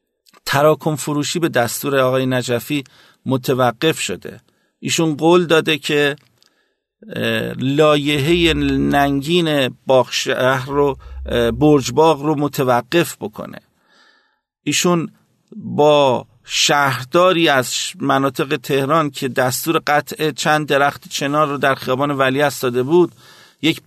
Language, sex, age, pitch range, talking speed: Persian, male, 50-69, 130-160 Hz, 100 wpm